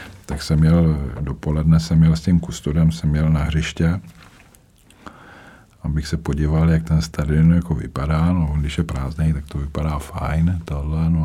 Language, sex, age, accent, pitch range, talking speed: Czech, male, 50-69, native, 75-85 Hz, 160 wpm